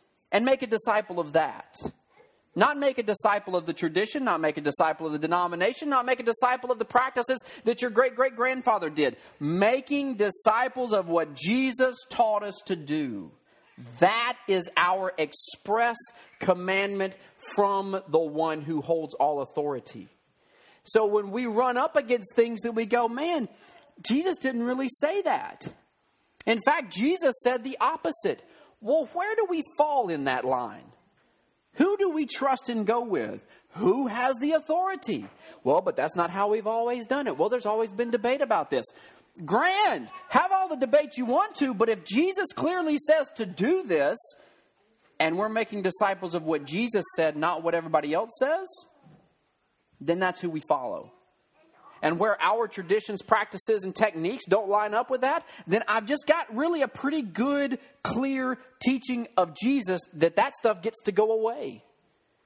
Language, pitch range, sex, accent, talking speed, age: English, 190-270 Hz, male, American, 165 wpm, 40-59